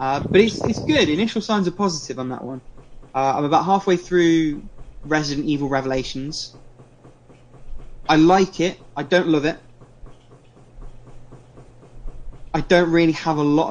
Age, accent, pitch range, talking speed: 20-39, British, 130-145 Hz, 145 wpm